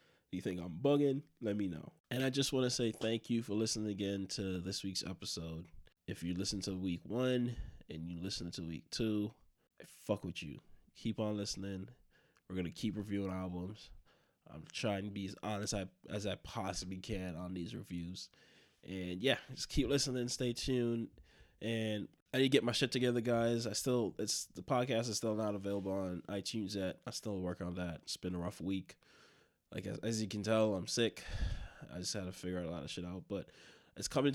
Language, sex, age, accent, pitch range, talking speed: English, male, 20-39, American, 90-115 Hz, 205 wpm